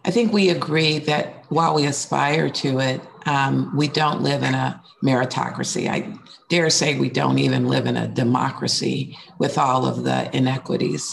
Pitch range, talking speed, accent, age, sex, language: 145-175 Hz, 175 wpm, American, 50-69, female, English